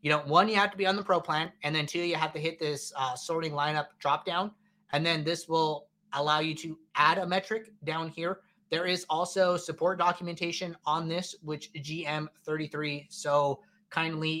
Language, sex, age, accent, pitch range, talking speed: English, male, 30-49, American, 145-185 Hz, 195 wpm